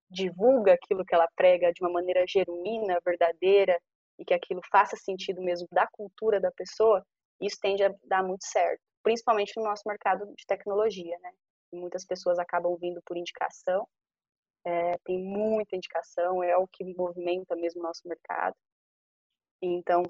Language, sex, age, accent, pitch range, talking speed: Portuguese, female, 20-39, Brazilian, 180-210 Hz, 150 wpm